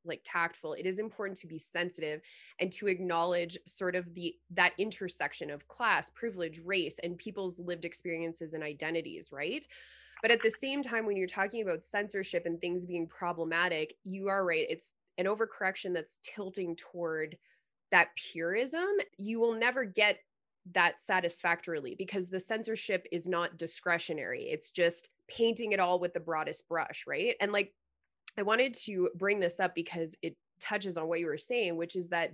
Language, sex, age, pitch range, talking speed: English, female, 20-39, 170-200 Hz, 175 wpm